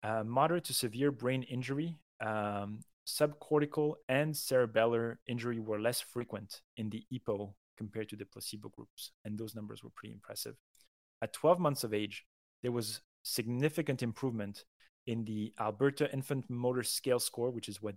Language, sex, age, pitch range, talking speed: English, male, 30-49, 105-125 Hz, 155 wpm